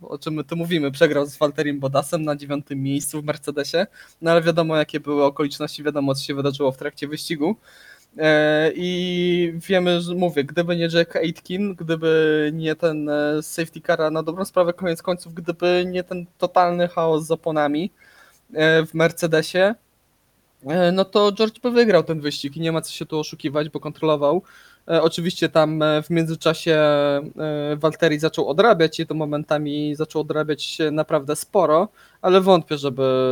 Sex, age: male, 20-39